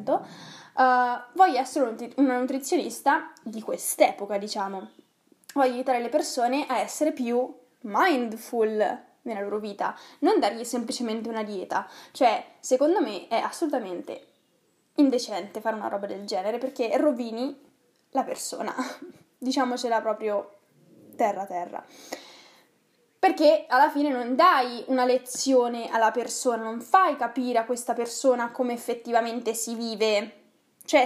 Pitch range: 225-265 Hz